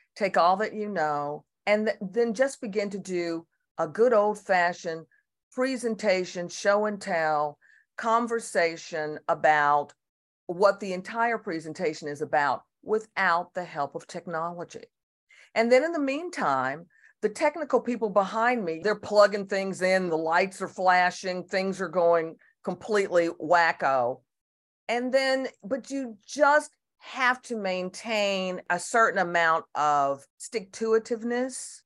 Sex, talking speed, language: female, 120 wpm, English